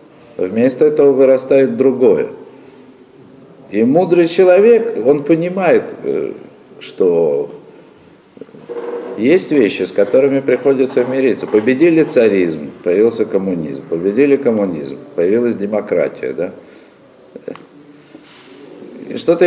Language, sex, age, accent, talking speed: Russian, male, 50-69, native, 75 wpm